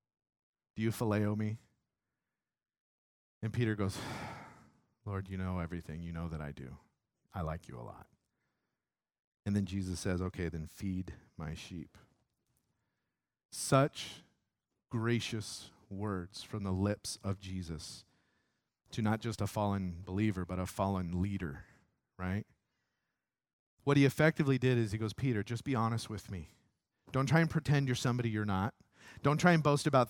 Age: 40-59